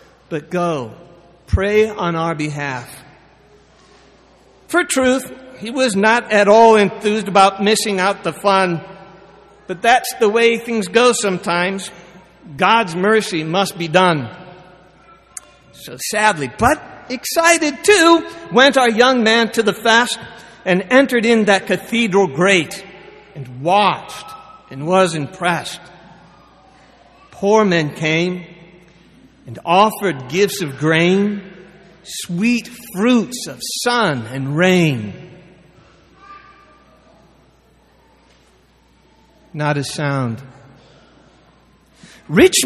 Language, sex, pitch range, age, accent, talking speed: English, male, 170-230 Hz, 60-79, American, 100 wpm